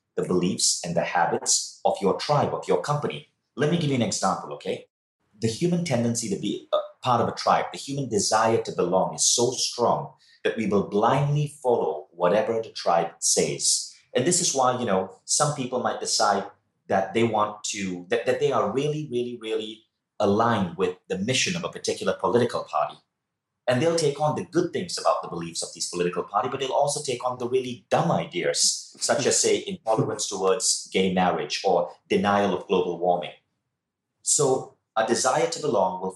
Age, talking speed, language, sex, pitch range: 30-49, 190 wpm, English, male, 95-145 Hz